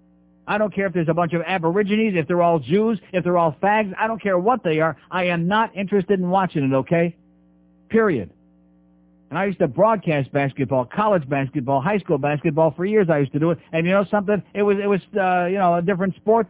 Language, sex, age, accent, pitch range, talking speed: English, male, 60-79, American, 140-195 Hz, 235 wpm